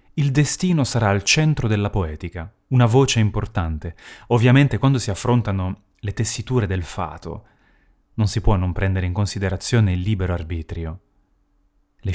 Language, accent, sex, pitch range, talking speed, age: Italian, native, male, 95-130 Hz, 145 wpm, 30-49